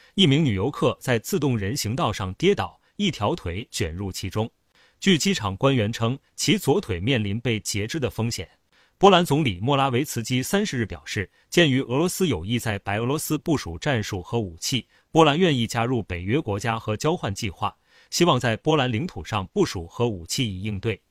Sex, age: male, 30-49